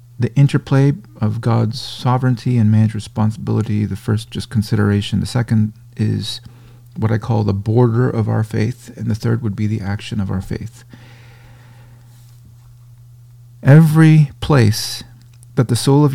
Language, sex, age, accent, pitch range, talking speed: English, male, 40-59, American, 110-120 Hz, 145 wpm